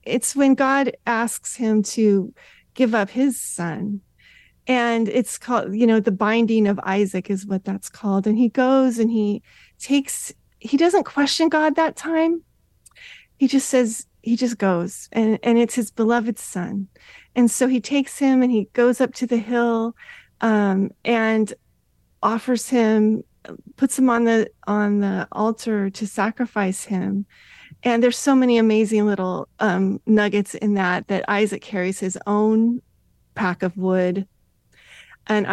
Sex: female